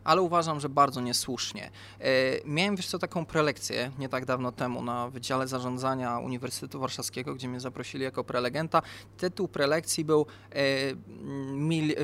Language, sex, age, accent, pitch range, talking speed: Polish, male, 20-39, native, 135-185 Hz, 150 wpm